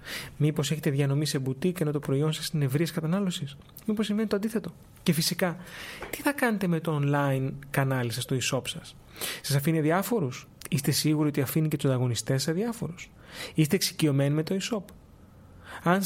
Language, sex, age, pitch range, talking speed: Greek, male, 30-49, 140-170 Hz, 175 wpm